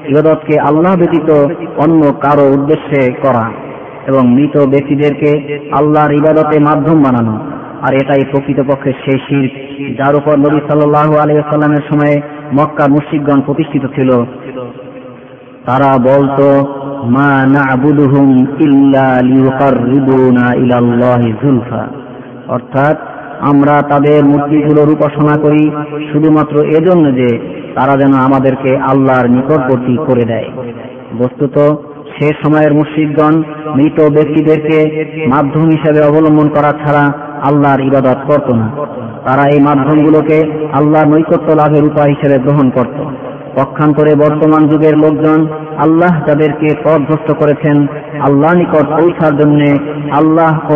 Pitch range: 135-150 Hz